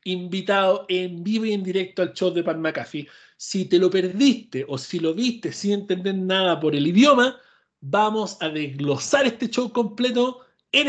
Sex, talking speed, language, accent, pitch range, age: male, 175 wpm, Spanish, Argentinian, 165-220 Hz, 40-59